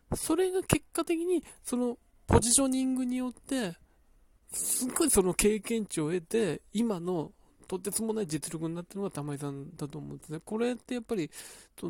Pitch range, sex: 160-260 Hz, male